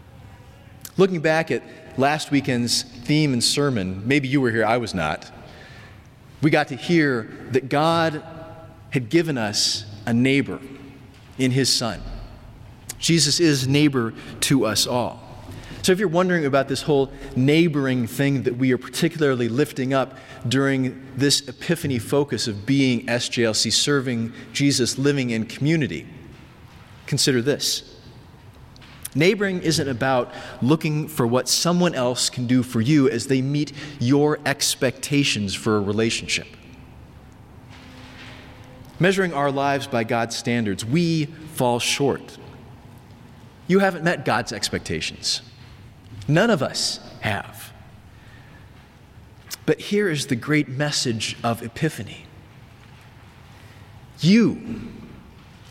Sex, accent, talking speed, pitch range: male, American, 120 wpm, 115-145 Hz